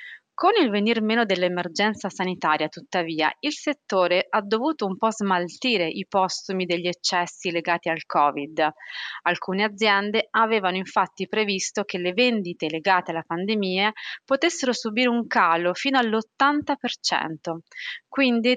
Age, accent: 30-49, native